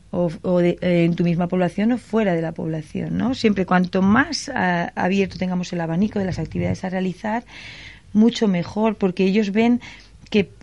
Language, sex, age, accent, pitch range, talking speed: Spanish, female, 30-49, Spanish, 175-215 Hz, 185 wpm